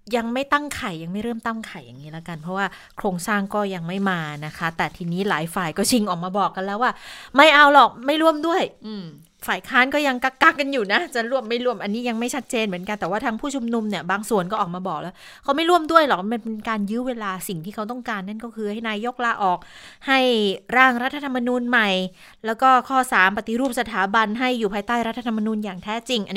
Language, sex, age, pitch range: Thai, female, 20-39, 185-245 Hz